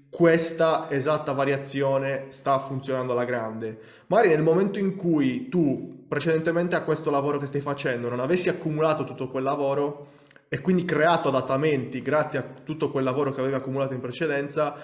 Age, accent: 20-39, native